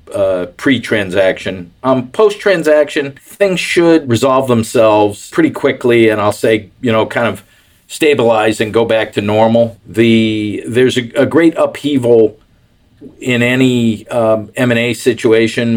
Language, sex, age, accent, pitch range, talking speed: English, male, 50-69, American, 105-120 Hz, 145 wpm